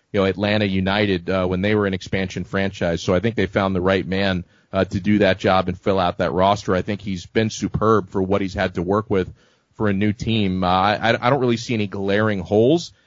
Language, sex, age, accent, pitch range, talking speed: English, male, 30-49, American, 95-115 Hz, 250 wpm